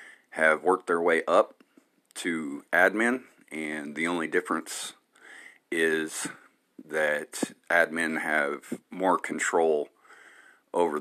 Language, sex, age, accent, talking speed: English, male, 40-59, American, 100 wpm